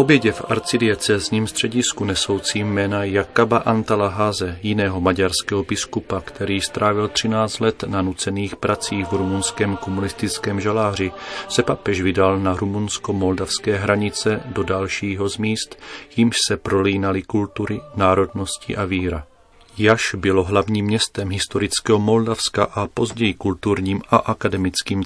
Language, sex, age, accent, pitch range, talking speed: Czech, male, 40-59, native, 95-110 Hz, 120 wpm